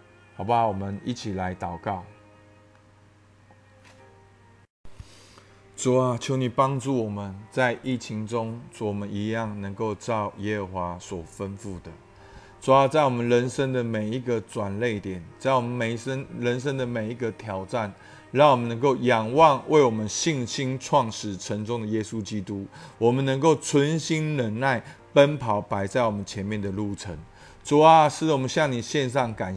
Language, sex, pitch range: Chinese, male, 105-140 Hz